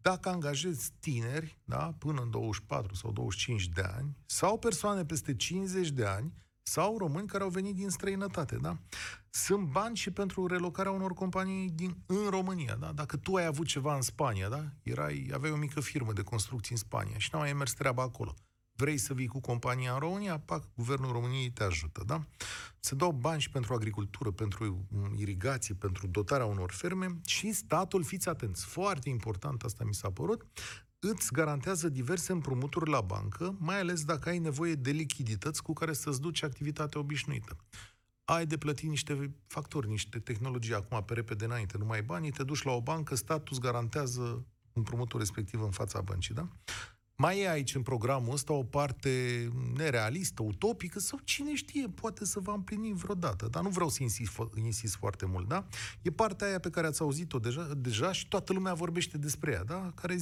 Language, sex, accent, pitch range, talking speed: Romanian, male, native, 115-175 Hz, 185 wpm